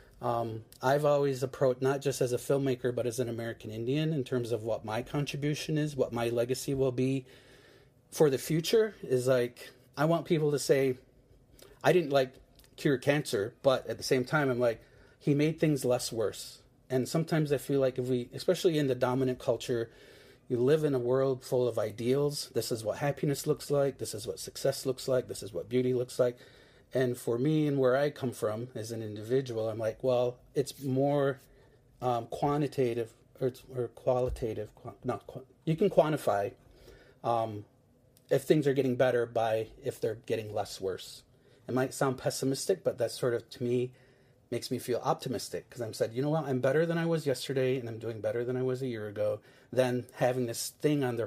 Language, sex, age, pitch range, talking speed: English, male, 30-49, 120-140 Hz, 200 wpm